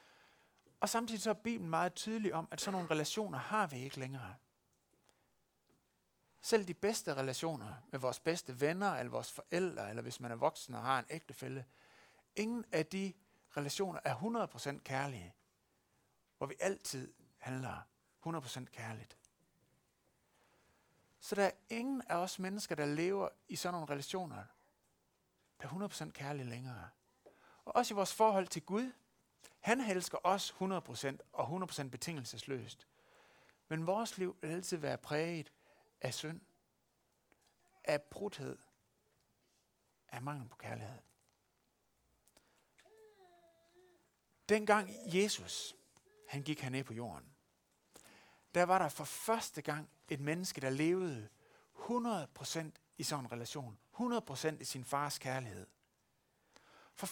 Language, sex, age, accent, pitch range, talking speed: Danish, male, 60-79, native, 135-195 Hz, 130 wpm